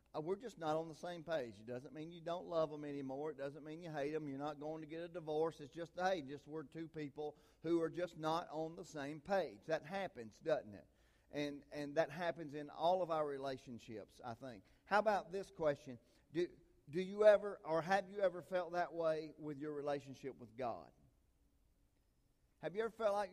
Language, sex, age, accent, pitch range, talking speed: English, male, 50-69, American, 140-180 Hz, 215 wpm